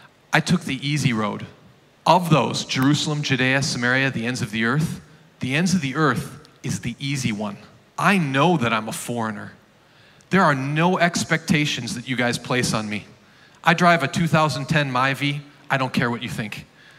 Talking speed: 180 wpm